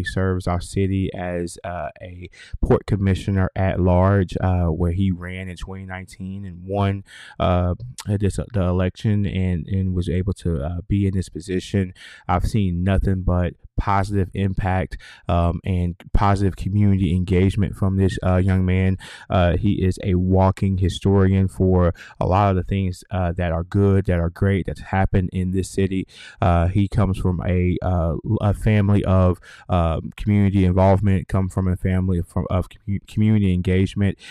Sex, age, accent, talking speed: male, 20-39, American, 165 wpm